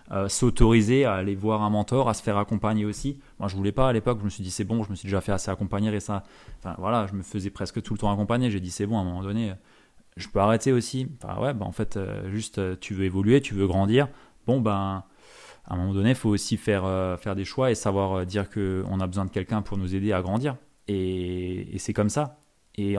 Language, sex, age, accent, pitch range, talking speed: French, male, 20-39, French, 100-120 Hz, 270 wpm